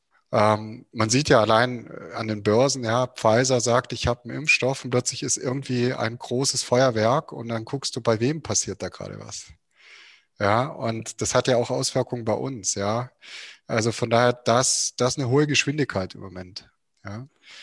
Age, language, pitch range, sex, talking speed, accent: 30-49, German, 115-140 Hz, male, 175 wpm, German